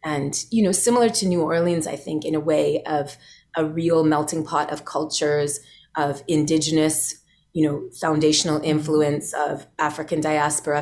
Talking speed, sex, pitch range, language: 155 wpm, female, 150-165 Hz, English